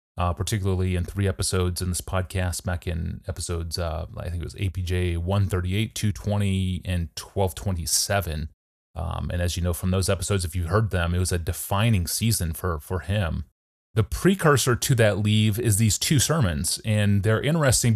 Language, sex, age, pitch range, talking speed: English, male, 30-49, 90-105 Hz, 175 wpm